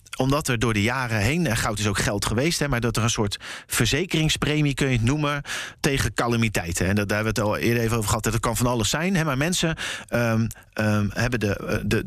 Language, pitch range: Dutch, 105-140 Hz